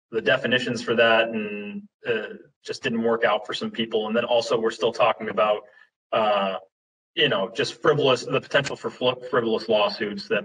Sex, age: male, 20-39